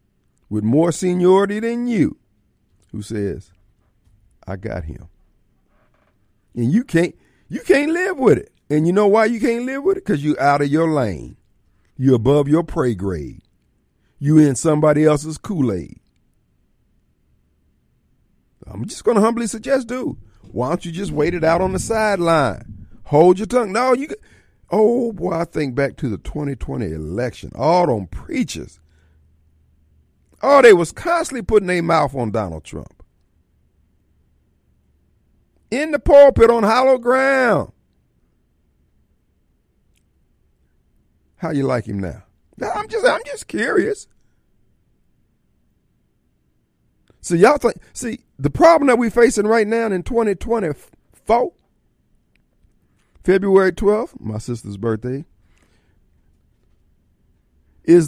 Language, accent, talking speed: English, American, 125 wpm